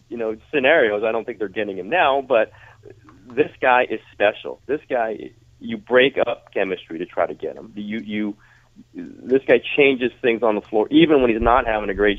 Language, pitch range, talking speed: English, 90-115 Hz, 205 wpm